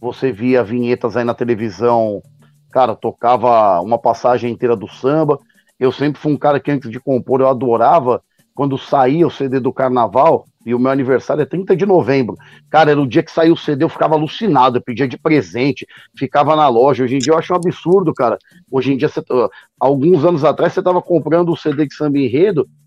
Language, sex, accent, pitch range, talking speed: Portuguese, male, Brazilian, 135-175 Hz, 205 wpm